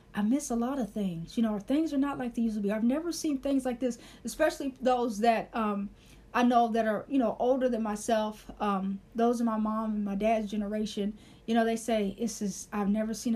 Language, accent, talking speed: English, American, 240 wpm